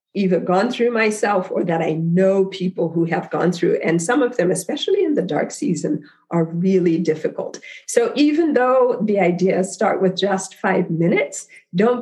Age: 50-69